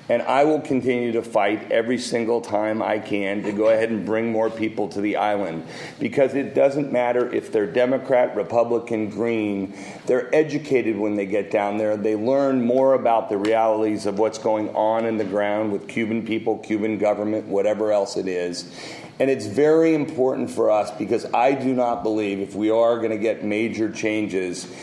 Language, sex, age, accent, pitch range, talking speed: English, male, 40-59, American, 105-125 Hz, 190 wpm